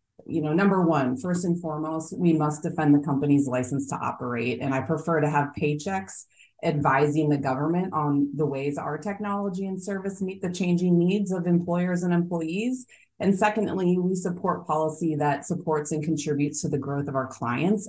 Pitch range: 140-175 Hz